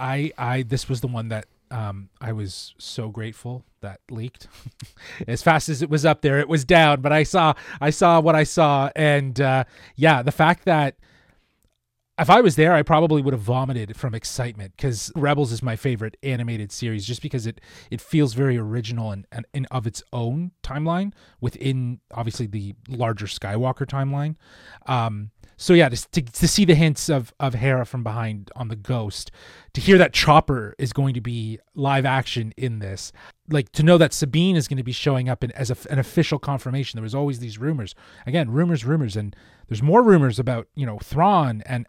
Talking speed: 200 wpm